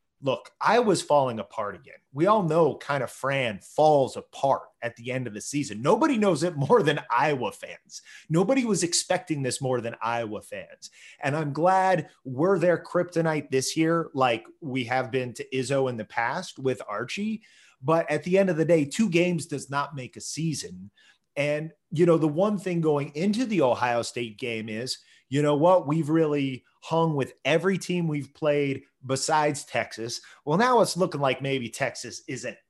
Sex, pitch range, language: male, 125-165 Hz, English